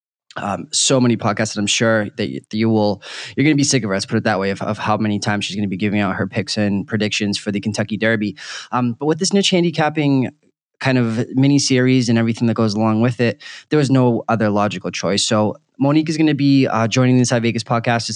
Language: English